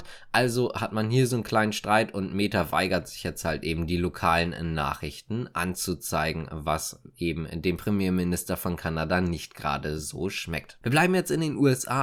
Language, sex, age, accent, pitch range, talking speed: German, male, 20-39, German, 110-135 Hz, 175 wpm